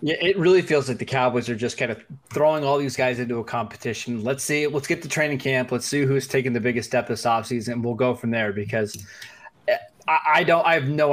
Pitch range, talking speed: 120-155 Hz, 245 wpm